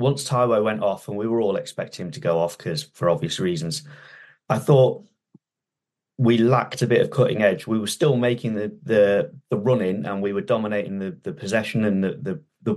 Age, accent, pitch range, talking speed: 30-49, British, 90-115 Hz, 210 wpm